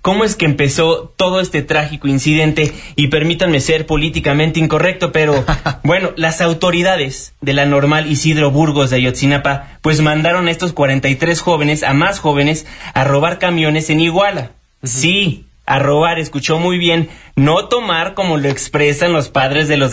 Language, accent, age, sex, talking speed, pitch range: Spanish, Mexican, 30-49, male, 160 wpm, 140-165 Hz